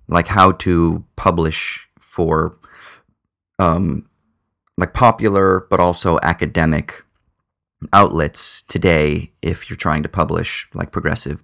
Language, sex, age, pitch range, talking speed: English, male, 30-49, 85-105 Hz, 105 wpm